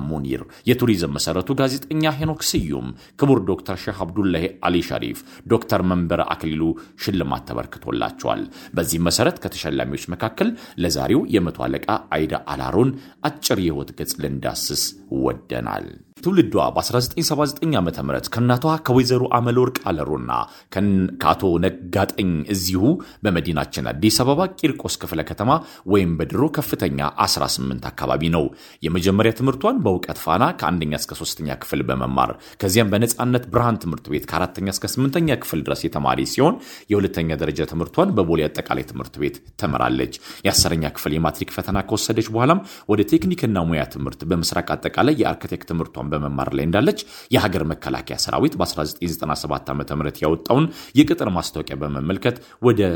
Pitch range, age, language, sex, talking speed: 75-125 Hz, 40-59, Amharic, male, 115 wpm